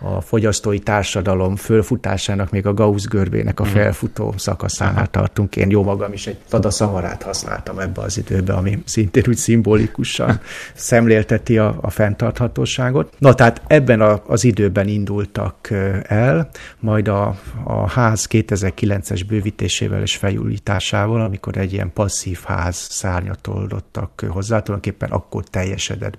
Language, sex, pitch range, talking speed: Hungarian, male, 100-110 Hz, 130 wpm